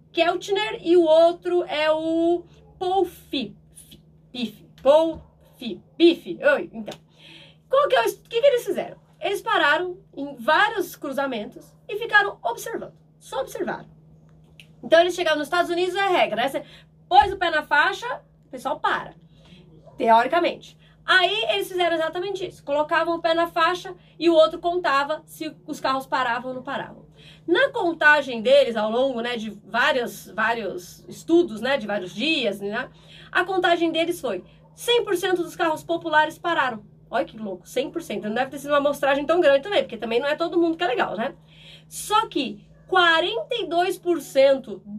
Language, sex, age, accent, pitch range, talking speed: Portuguese, female, 20-39, Brazilian, 235-355 Hz, 160 wpm